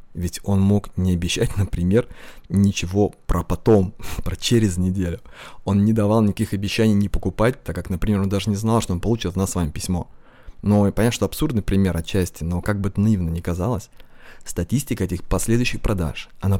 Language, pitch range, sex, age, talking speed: Russian, 90-105 Hz, male, 20-39, 190 wpm